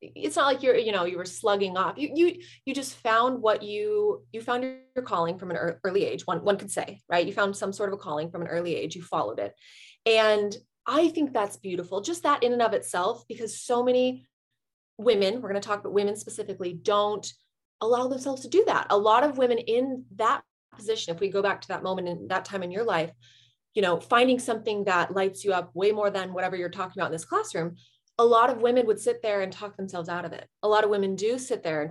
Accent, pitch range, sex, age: American, 190-250 Hz, female, 30-49